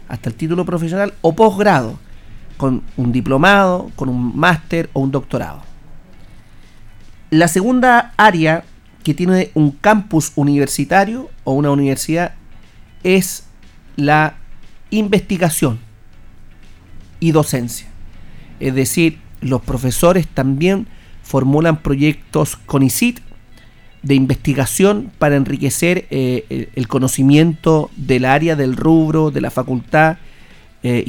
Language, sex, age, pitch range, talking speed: Spanish, male, 40-59, 125-160 Hz, 110 wpm